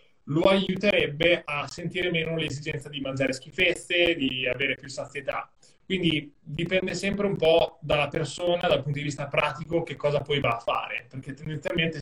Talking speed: 165 wpm